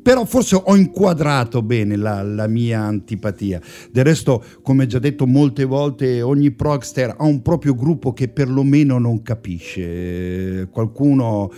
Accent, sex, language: native, male, Italian